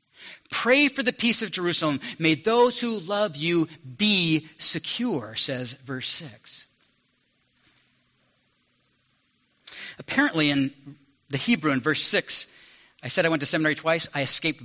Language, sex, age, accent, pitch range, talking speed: English, male, 40-59, American, 135-180 Hz, 130 wpm